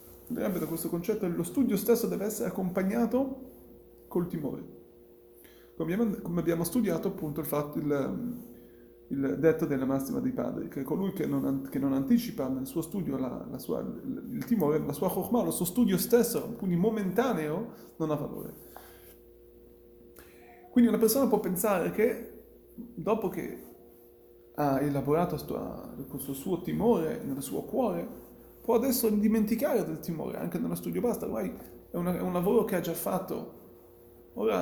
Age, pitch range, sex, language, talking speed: 30-49, 150-220 Hz, male, Italian, 155 wpm